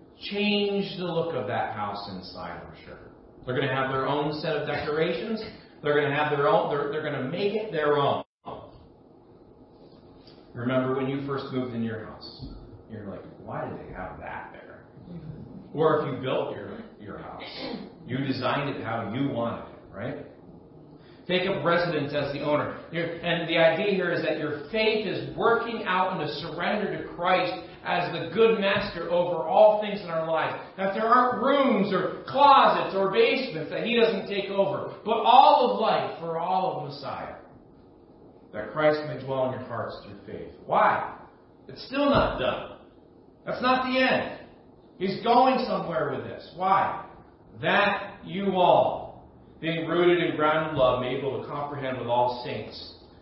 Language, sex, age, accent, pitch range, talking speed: English, male, 40-59, American, 130-195 Hz, 180 wpm